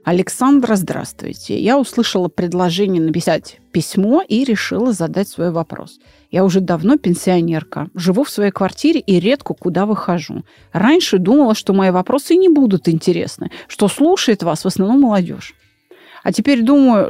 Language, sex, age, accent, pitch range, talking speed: Russian, female, 30-49, native, 180-265 Hz, 145 wpm